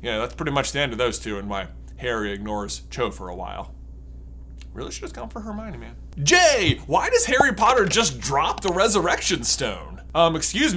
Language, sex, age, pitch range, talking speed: English, male, 20-39, 135-225 Hz, 195 wpm